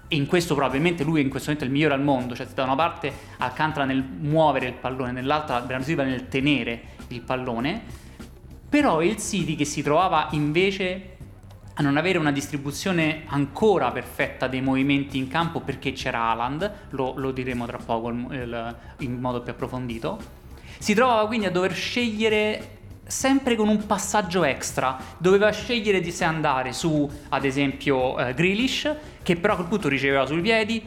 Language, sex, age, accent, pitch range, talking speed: Italian, male, 30-49, native, 130-180 Hz, 175 wpm